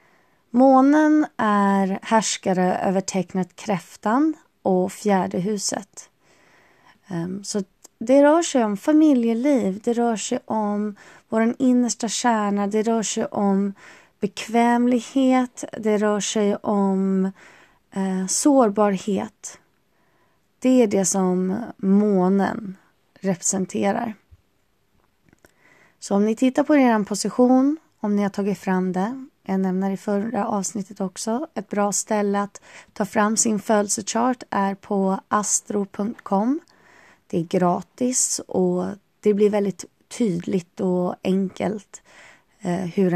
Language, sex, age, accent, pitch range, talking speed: Swedish, female, 20-39, native, 190-230 Hz, 110 wpm